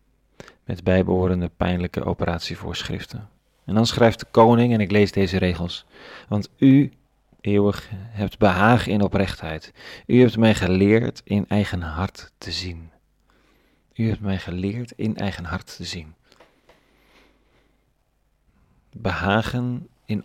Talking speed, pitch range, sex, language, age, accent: 120 wpm, 95-115 Hz, male, Dutch, 40-59, Dutch